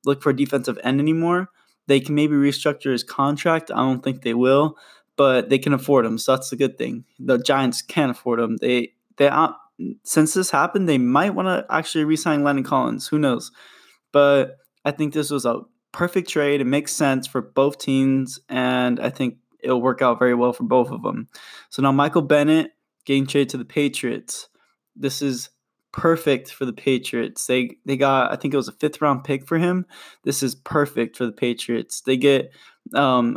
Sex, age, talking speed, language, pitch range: male, 10-29, 200 wpm, English, 130-155 Hz